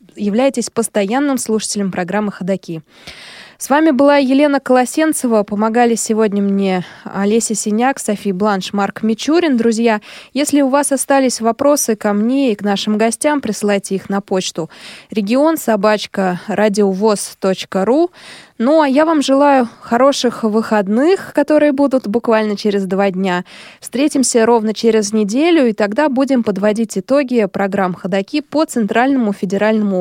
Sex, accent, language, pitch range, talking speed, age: female, native, Russian, 200-255 Hz, 125 wpm, 20-39